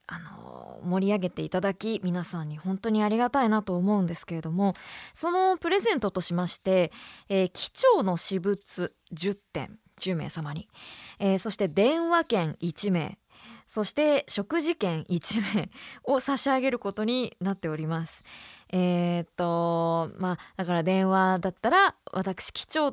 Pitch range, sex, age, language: 175-245 Hz, female, 20-39, Japanese